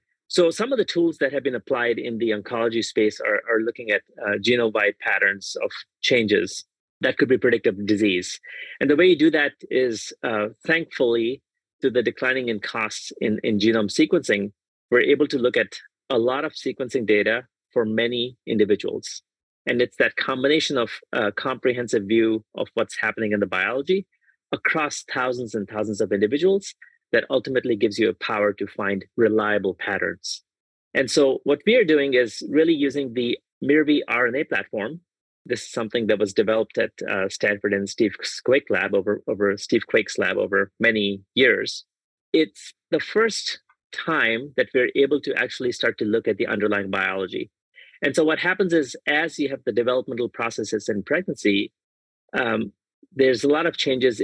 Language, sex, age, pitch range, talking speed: English, male, 30-49, 105-150 Hz, 175 wpm